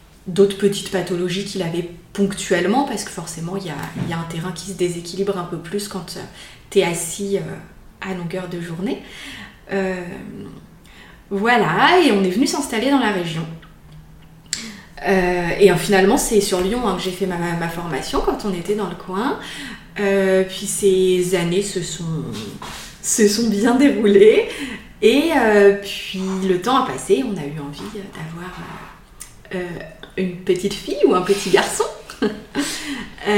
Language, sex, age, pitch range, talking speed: French, female, 20-39, 180-205 Hz, 160 wpm